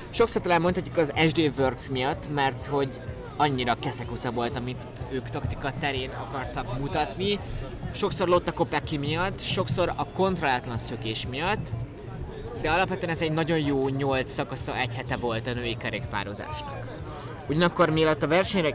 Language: Hungarian